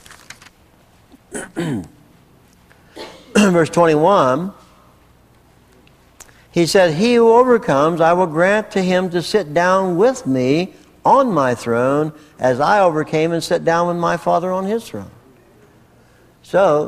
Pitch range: 130-190 Hz